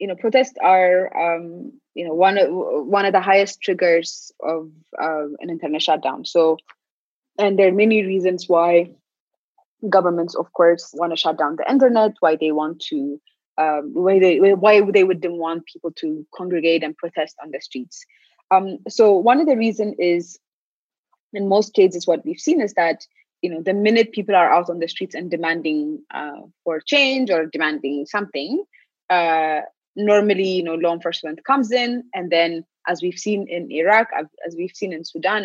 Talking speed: 180 wpm